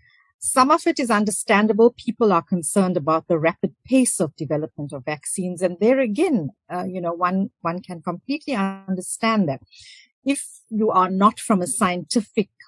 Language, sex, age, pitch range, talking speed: English, female, 50-69, 170-225 Hz, 165 wpm